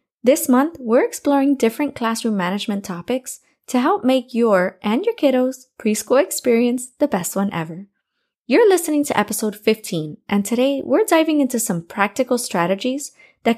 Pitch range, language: 200-270 Hz, English